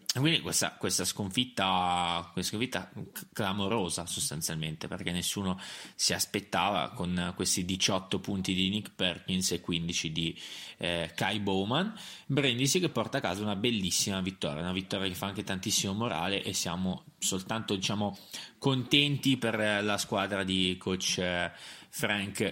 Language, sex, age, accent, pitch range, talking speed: Italian, male, 20-39, native, 90-105 Hz, 140 wpm